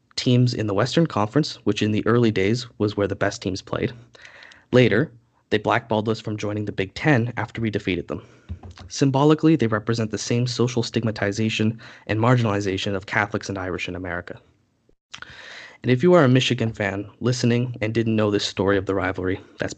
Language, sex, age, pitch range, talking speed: English, male, 20-39, 100-125 Hz, 185 wpm